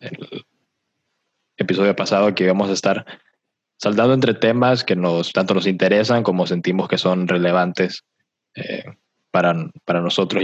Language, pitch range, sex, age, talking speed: Spanish, 90-110 Hz, male, 20-39, 140 wpm